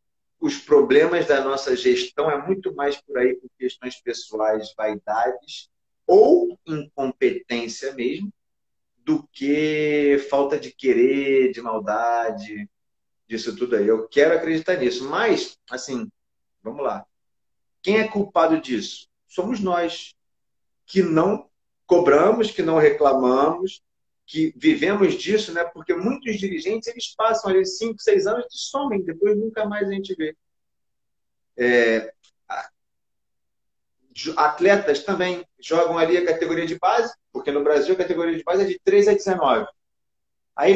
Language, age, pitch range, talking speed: Portuguese, 40-59, 150-225 Hz, 135 wpm